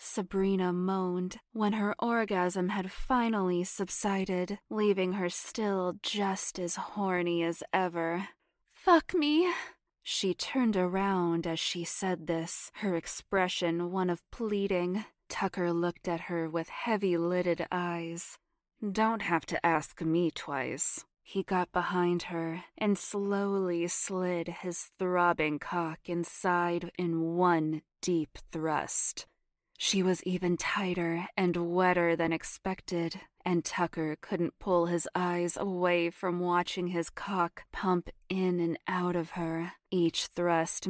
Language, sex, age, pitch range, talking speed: English, female, 20-39, 170-190 Hz, 125 wpm